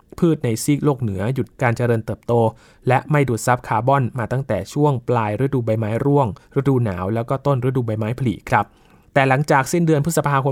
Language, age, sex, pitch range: Thai, 20-39, male, 115-140 Hz